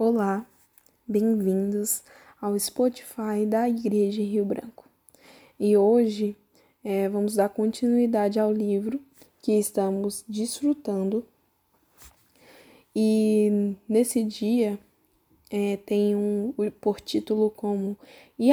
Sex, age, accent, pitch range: female, 10-29, Brazilian, 195-225 Hz